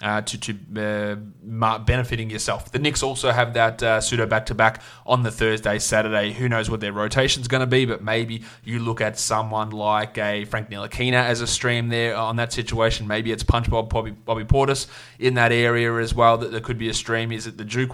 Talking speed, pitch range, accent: 215 wpm, 110-120 Hz, Australian